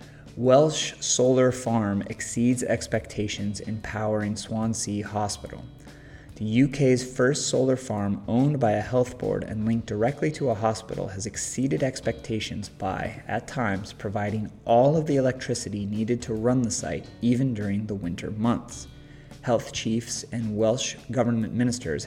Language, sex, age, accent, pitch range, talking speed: English, male, 30-49, American, 105-120 Hz, 140 wpm